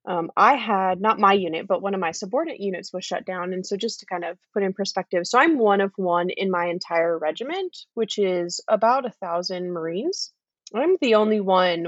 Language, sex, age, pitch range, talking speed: English, female, 20-39, 180-225 Hz, 215 wpm